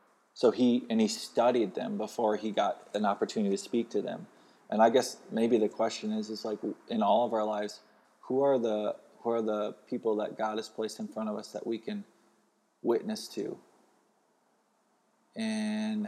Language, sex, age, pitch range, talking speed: English, male, 20-39, 105-140 Hz, 185 wpm